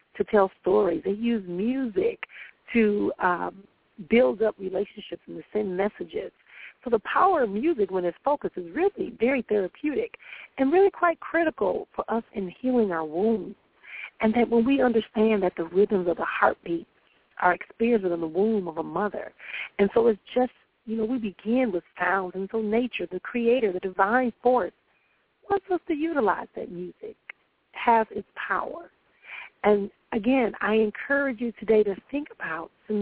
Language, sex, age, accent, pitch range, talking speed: English, female, 40-59, American, 195-250 Hz, 170 wpm